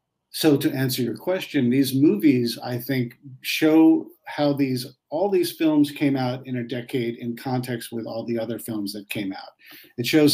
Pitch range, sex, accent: 120-150 Hz, male, American